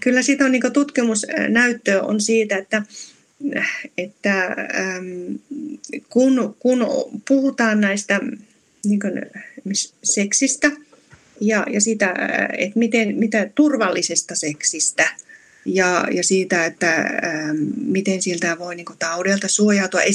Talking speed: 100 wpm